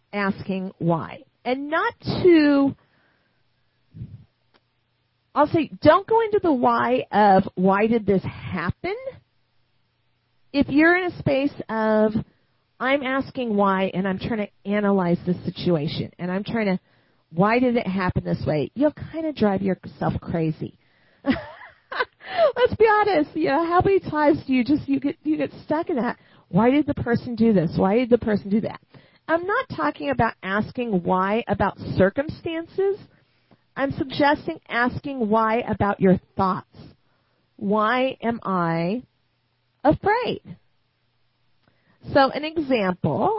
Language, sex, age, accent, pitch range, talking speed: English, female, 40-59, American, 185-280 Hz, 140 wpm